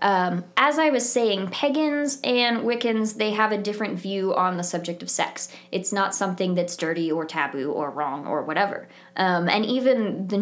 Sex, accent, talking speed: female, American, 190 wpm